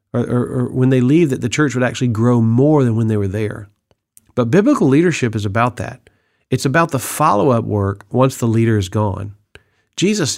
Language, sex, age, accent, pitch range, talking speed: English, male, 40-59, American, 110-155 Hz, 200 wpm